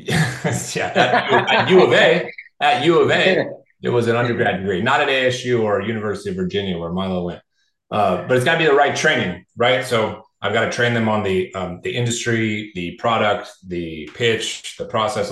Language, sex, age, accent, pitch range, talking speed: English, male, 30-49, American, 100-125 Hz, 200 wpm